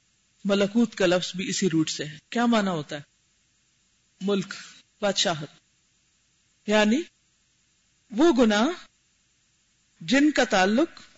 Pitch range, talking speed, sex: 190-255 Hz, 105 wpm, female